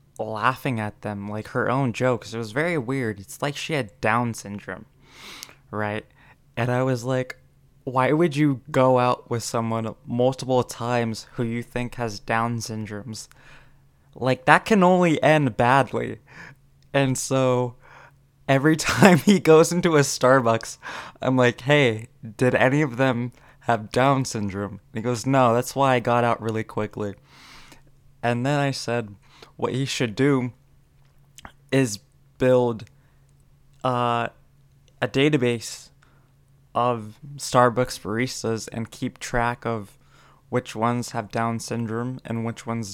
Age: 20-39